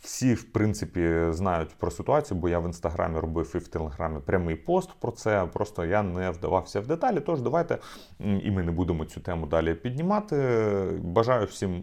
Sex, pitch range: male, 90-120 Hz